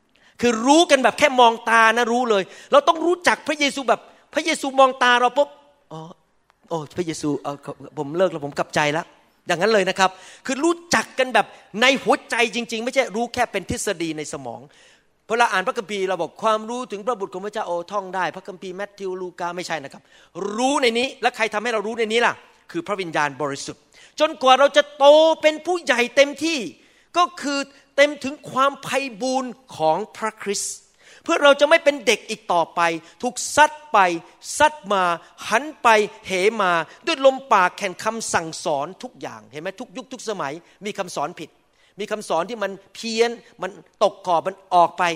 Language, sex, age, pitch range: Thai, male, 30-49, 185-260 Hz